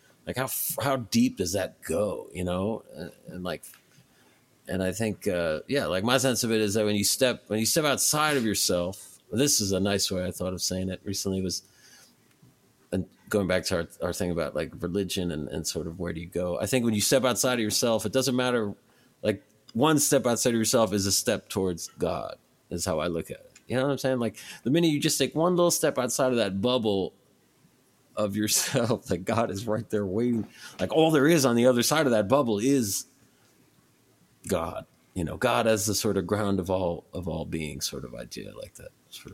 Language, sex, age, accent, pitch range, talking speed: English, male, 30-49, American, 95-125 Hz, 225 wpm